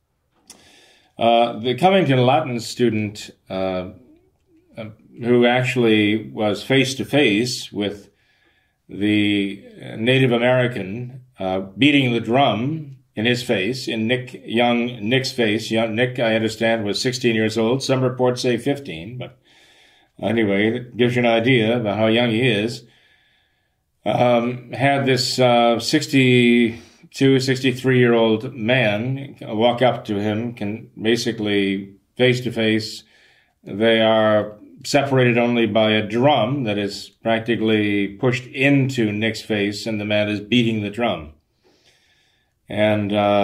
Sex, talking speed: male, 125 wpm